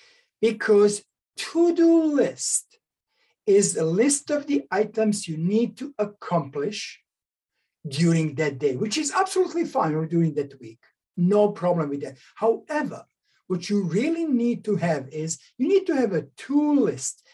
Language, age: English, 60-79